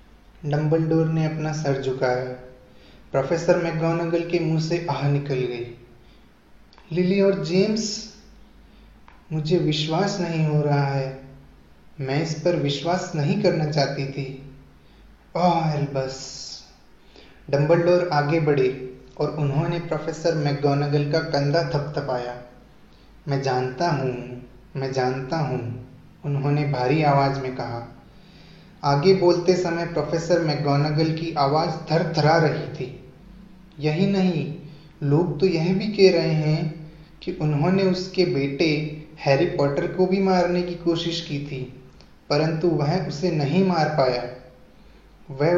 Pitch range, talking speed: 140-175 Hz, 120 wpm